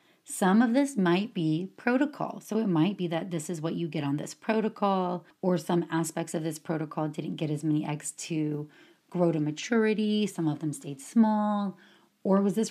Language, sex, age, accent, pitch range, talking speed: English, female, 30-49, American, 160-215 Hz, 200 wpm